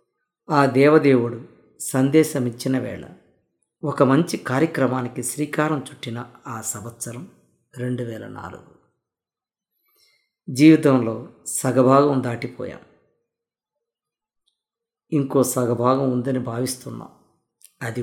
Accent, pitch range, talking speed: native, 125-150 Hz, 75 wpm